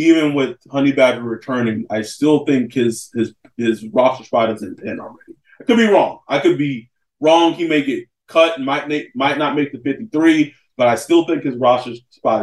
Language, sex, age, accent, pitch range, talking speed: English, male, 20-39, American, 110-135 Hz, 215 wpm